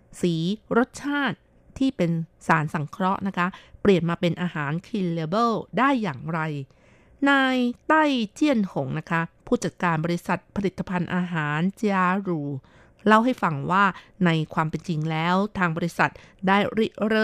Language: Thai